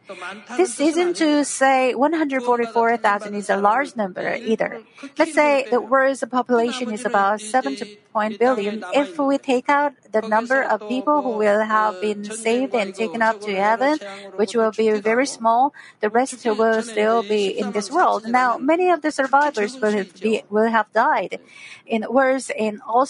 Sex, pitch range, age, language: female, 215-270 Hz, 40-59, Korean